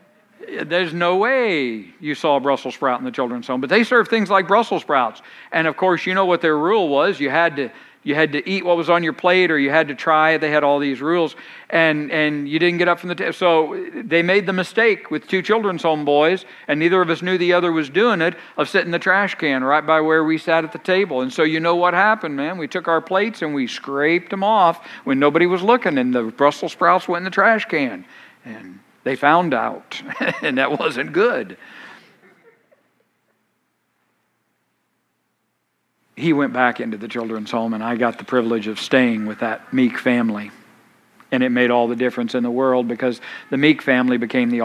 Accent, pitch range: American, 125-180 Hz